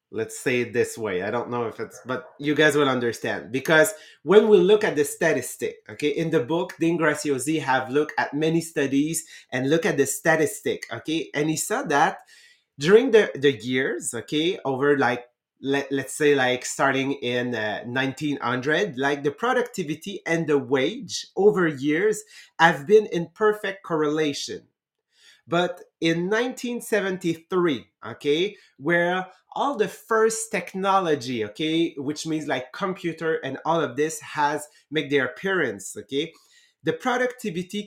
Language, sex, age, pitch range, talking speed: English, male, 30-49, 145-195 Hz, 150 wpm